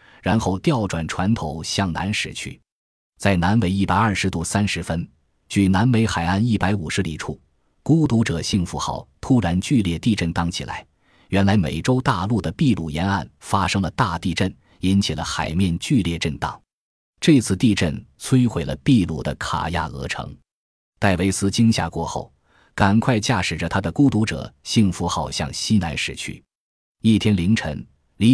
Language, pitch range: Chinese, 85-110 Hz